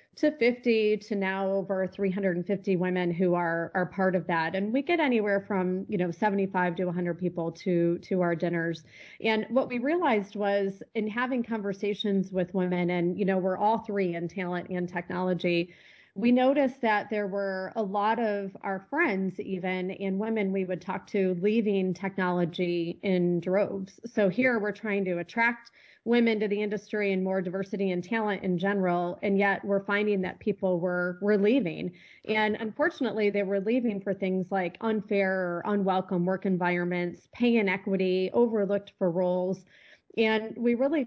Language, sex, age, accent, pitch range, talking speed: English, female, 30-49, American, 185-215 Hz, 170 wpm